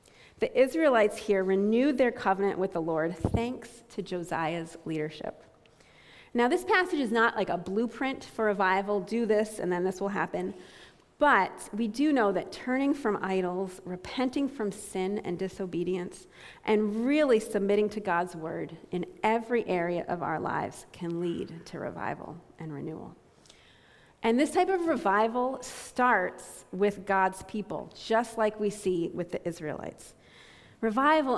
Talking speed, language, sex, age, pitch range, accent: 150 wpm, English, female, 30-49, 180-230 Hz, American